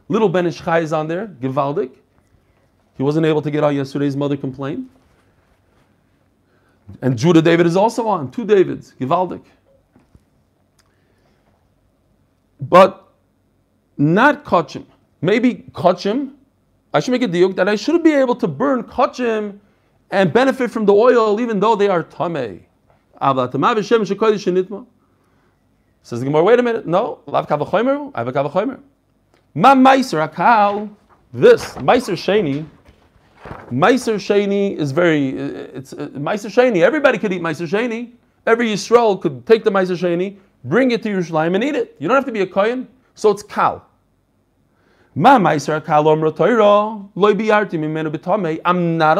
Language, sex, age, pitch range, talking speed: English, male, 40-59, 155-225 Hz, 140 wpm